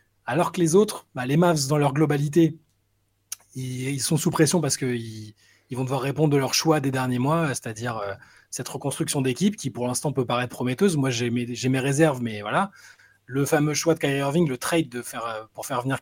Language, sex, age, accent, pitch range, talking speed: French, male, 20-39, French, 120-160 Hz, 215 wpm